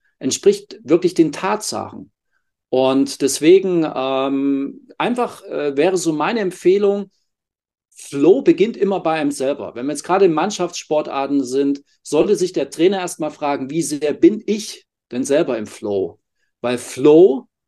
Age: 40-59